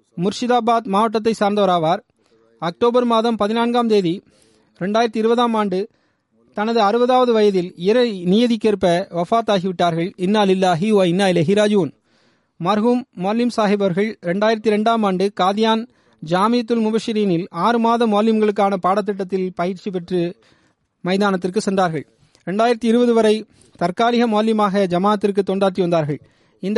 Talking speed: 110 wpm